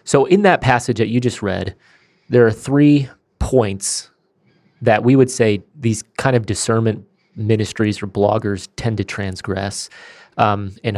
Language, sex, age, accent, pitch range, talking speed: English, male, 30-49, American, 100-120 Hz, 155 wpm